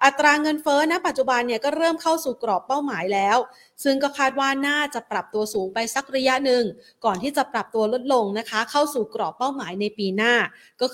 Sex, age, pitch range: female, 30-49, 210-270 Hz